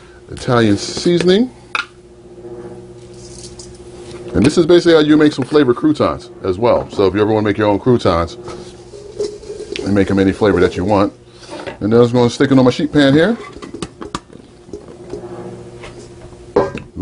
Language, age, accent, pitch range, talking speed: English, 30-49, American, 105-145 Hz, 160 wpm